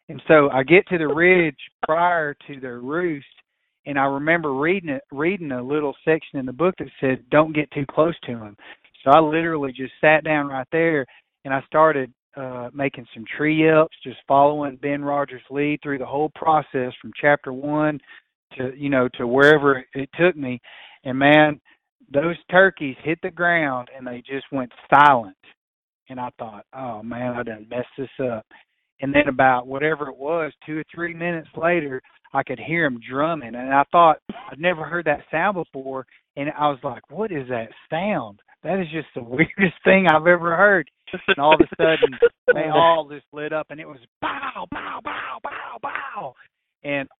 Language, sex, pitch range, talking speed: English, male, 130-155 Hz, 190 wpm